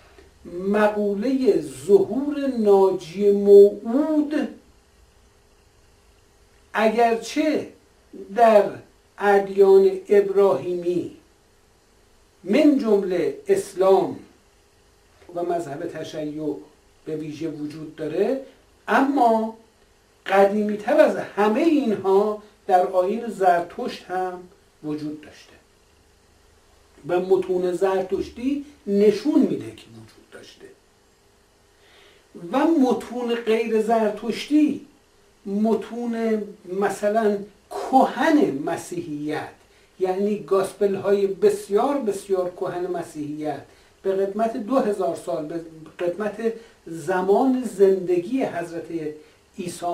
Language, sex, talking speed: Persian, male, 75 wpm